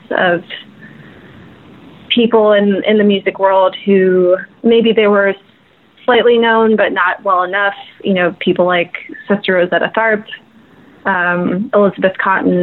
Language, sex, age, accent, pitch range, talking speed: English, female, 20-39, American, 180-215 Hz, 130 wpm